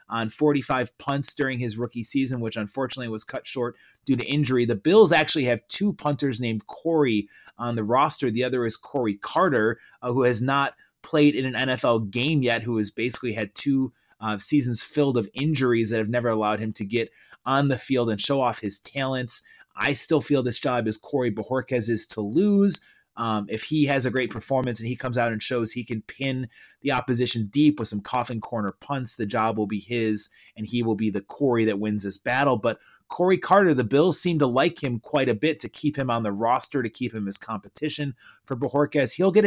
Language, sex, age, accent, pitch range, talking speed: English, male, 30-49, American, 110-140 Hz, 215 wpm